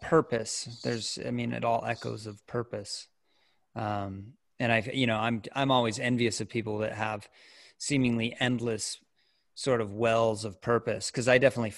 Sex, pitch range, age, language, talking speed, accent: male, 115-130 Hz, 30-49, English, 165 wpm, American